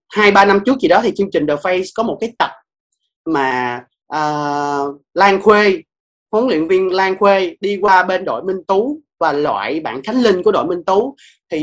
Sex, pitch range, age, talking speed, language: male, 175-230 Hz, 20-39, 200 wpm, Vietnamese